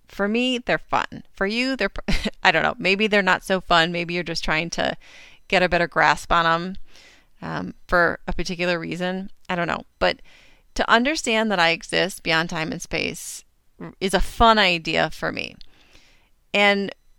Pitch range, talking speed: 170-210 Hz, 180 wpm